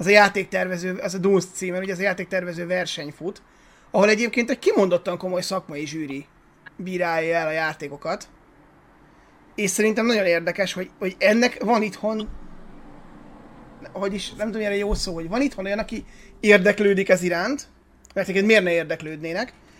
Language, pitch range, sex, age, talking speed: Hungarian, 175-210 Hz, male, 30-49, 165 wpm